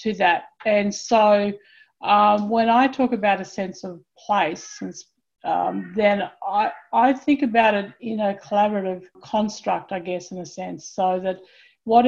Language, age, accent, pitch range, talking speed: English, 50-69, Australian, 190-225 Hz, 160 wpm